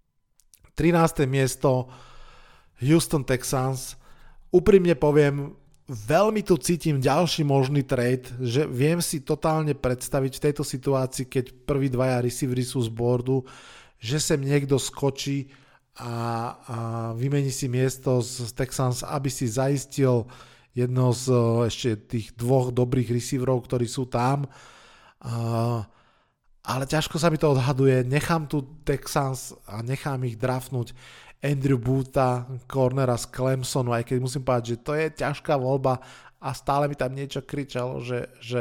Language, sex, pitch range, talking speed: Slovak, male, 120-140 Hz, 135 wpm